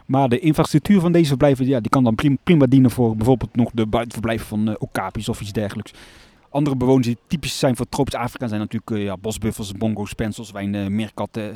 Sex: male